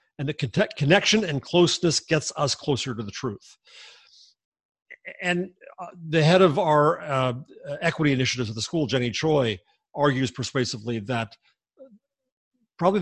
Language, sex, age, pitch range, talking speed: English, male, 50-69, 125-170 Hz, 140 wpm